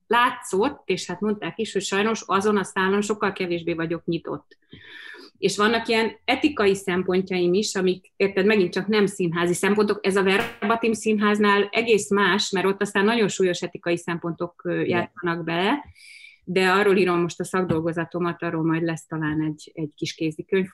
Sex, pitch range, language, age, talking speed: female, 165-200 Hz, Hungarian, 30-49, 165 wpm